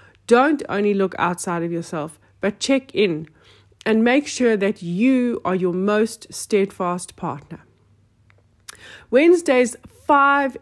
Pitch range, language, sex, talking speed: 180-240 Hz, English, female, 120 wpm